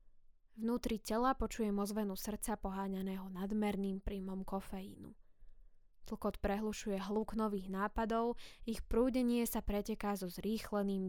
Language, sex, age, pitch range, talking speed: Slovak, female, 10-29, 195-220 Hz, 110 wpm